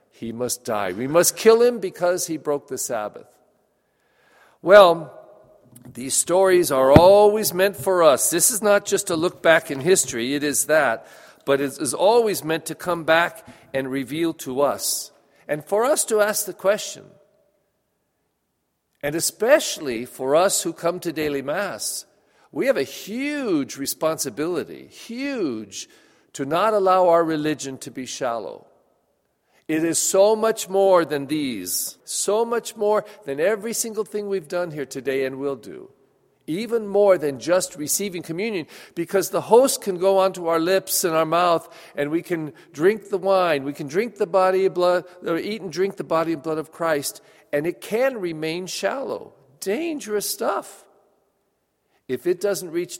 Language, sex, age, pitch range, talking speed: English, male, 50-69, 145-205 Hz, 165 wpm